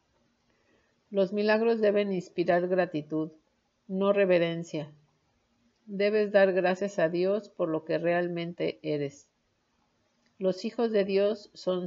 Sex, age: female, 50-69